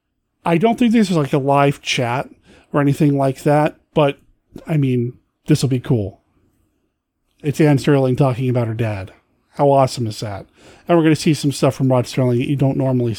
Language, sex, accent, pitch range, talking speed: English, male, American, 130-165 Hz, 205 wpm